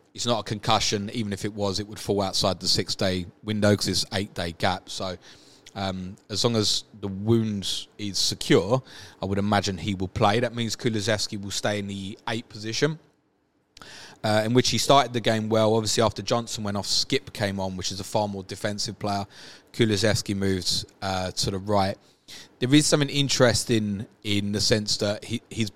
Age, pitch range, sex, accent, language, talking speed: 20-39, 100-125 Hz, male, British, English, 190 wpm